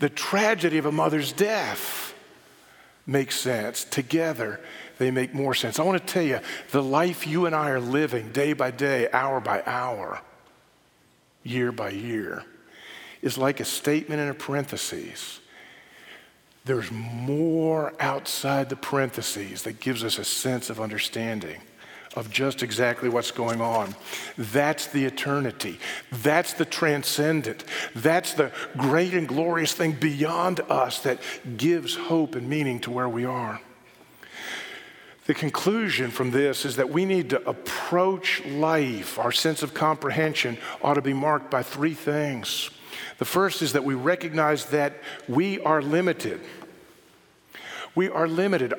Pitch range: 130-160 Hz